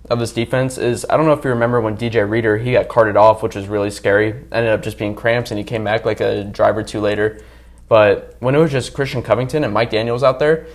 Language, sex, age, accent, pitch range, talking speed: English, male, 20-39, American, 105-125 Hz, 270 wpm